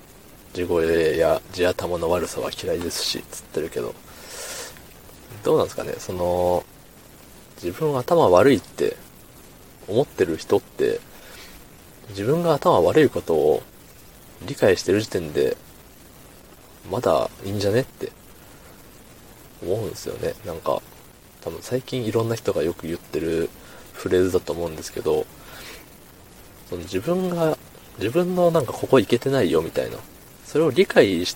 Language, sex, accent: Japanese, male, native